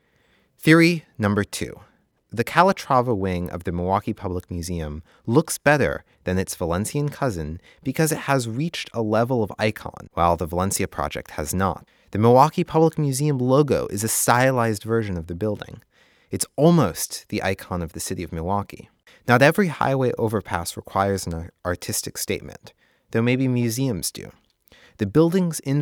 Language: English